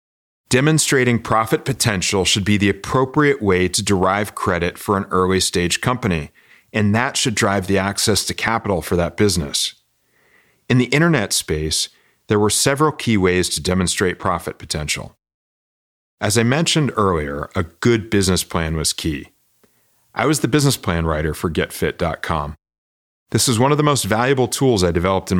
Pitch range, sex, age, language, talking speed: 85-120 Hz, male, 40-59, English, 165 wpm